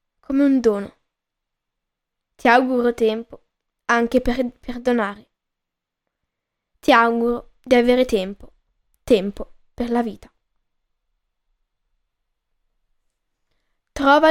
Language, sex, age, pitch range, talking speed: Italian, female, 10-29, 235-285 Hz, 80 wpm